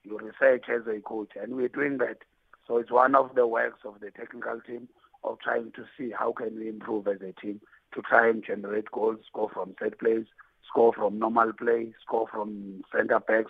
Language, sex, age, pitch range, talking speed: English, male, 50-69, 100-115 Hz, 205 wpm